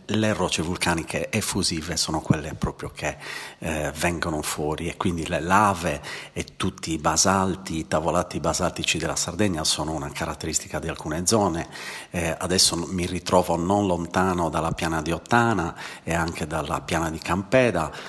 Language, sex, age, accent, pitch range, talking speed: Italian, male, 40-59, native, 80-95 Hz, 155 wpm